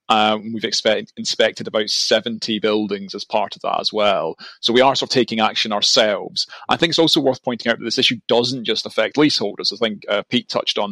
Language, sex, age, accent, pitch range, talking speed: English, male, 30-49, British, 110-125 Hz, 225 wpm